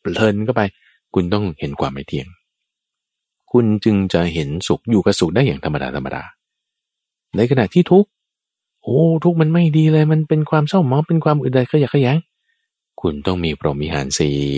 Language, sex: Thai, male